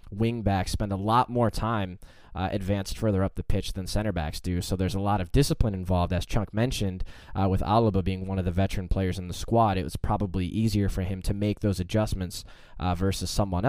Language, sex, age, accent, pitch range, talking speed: English, male, 10-29, American, 90-105 Hz, 230 wpm